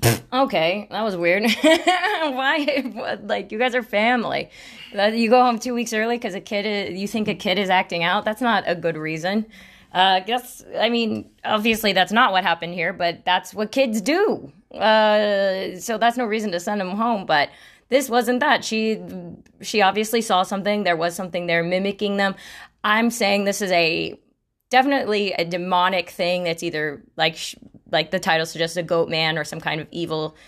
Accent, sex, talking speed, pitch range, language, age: American, female, 190 wpm, 170-220 Hz, English, 20-39